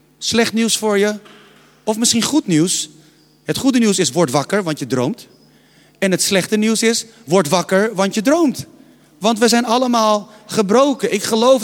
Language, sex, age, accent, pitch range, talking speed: Dutch, male, 40-59, Dutch, 165-240 Hz, 175 wpm